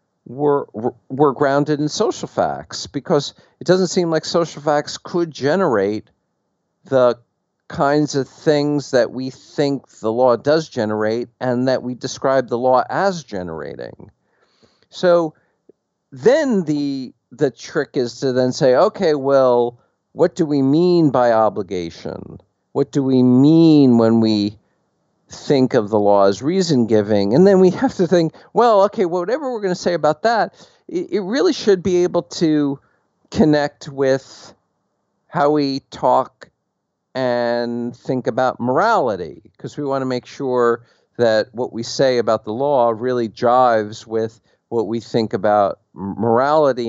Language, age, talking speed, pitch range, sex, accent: English, 50-69, 145 wpm, 115-155 Hz, male, American